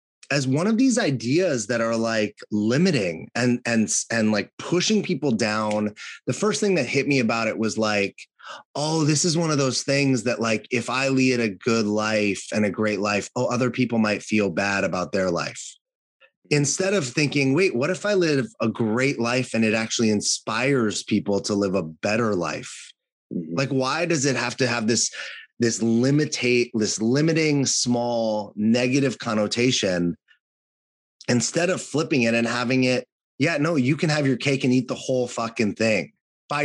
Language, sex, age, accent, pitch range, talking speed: English, male, 30-49, American, 110-145 Hz, 180 wpm